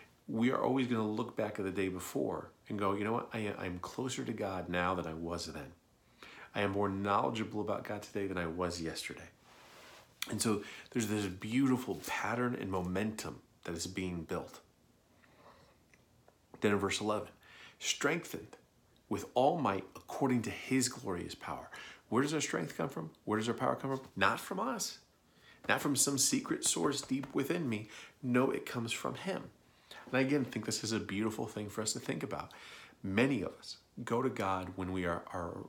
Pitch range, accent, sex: 90-115 Hz, American, male